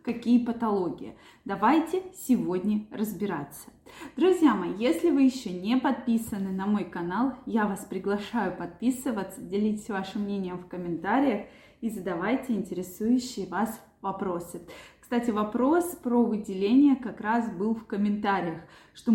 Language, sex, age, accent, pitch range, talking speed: Russian, female, 20-39, native, 200-255 Hz, 120 wpm